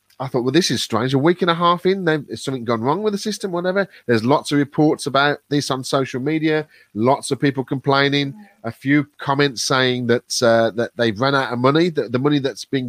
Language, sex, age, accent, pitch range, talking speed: English, male, 30-49, British, 125-175 Hz, 230 wpm